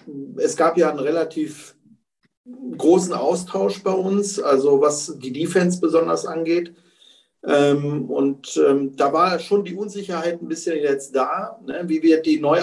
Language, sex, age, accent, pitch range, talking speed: German, male, 40-59, German, 140-180 Hz, 140 wpm